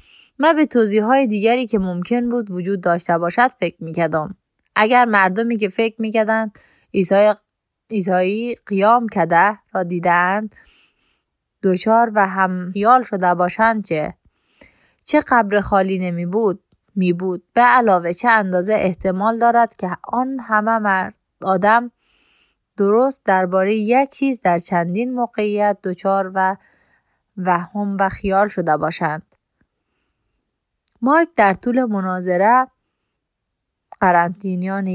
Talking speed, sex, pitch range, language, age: 120 wpm, female, 180-230 Hz, Persian, 20-39